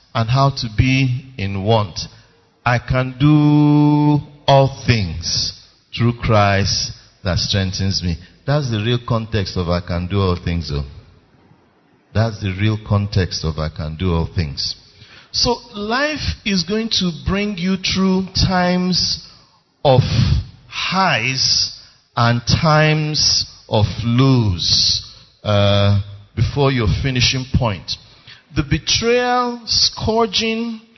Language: English